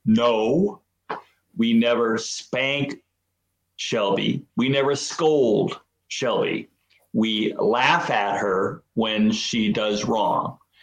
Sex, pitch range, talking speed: male, 105-170 Hz, 95 wpm